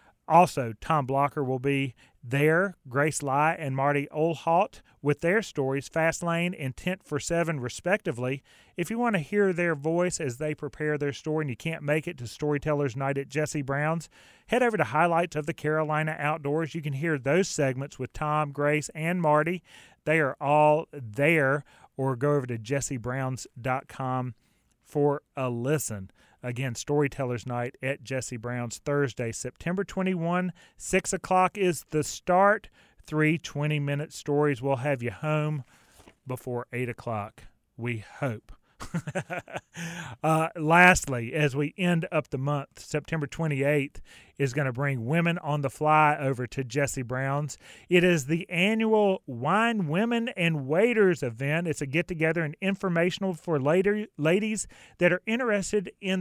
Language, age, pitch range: English, 30-49, 135-175 Hz